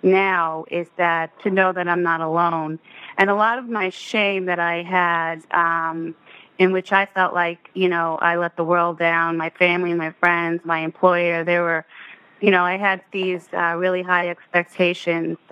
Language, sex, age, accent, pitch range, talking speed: English, female, 30-49, American, 170-185 Hz, 185 wpm